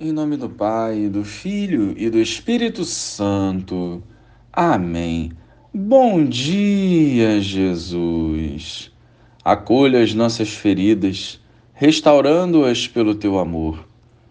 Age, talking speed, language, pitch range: 40-59, 90 wpm, Portuguese, 100-145 Hz